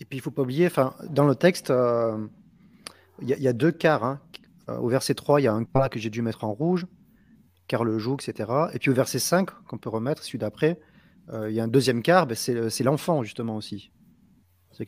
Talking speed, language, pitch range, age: 240 wpm, French, 115-150 Hz, 30-49